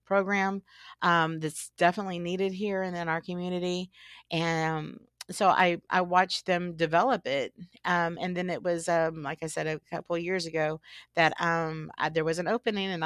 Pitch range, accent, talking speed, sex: 160-180 Hz, American, 185 wpm, female